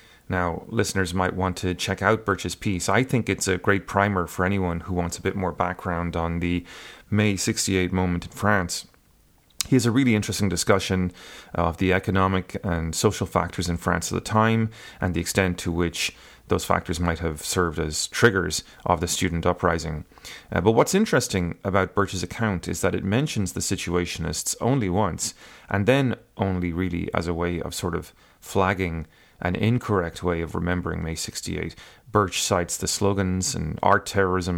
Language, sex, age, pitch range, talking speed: English, male, 30-49, 85-100 Hz, 180 wpm